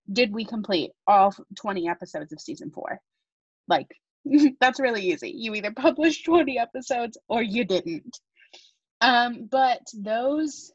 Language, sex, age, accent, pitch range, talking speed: English, female, 20-39, American, 190-245 Hz, 135 wpm